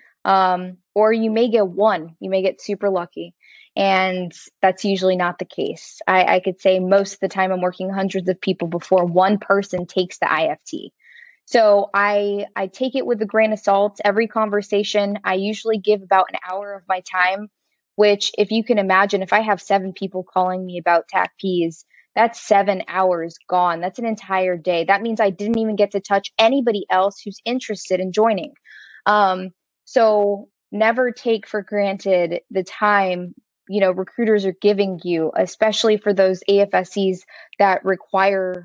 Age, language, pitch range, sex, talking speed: 20-39, English, 185-215 Hz, female, 175 wpm